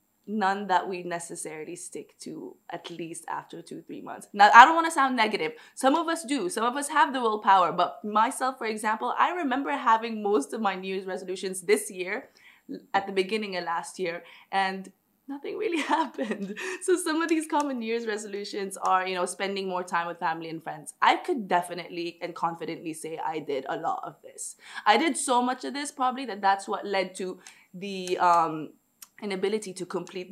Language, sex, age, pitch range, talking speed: Arabic, female, 20-39, 180-225 Hz, 200 wpm